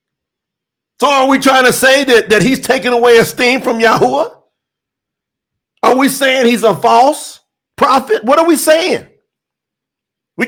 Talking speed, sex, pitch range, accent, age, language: 150 wpm, male, 195-275 Hz, American, 50-69, English